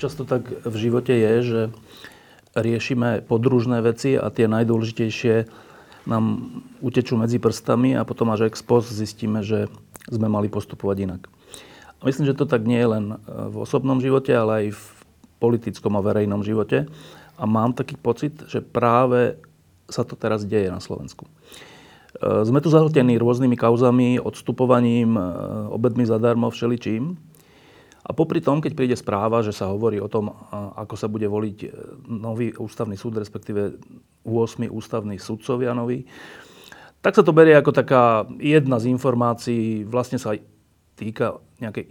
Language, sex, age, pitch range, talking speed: Slovak, male, 40-59, 110-125 Hz, 150 wpm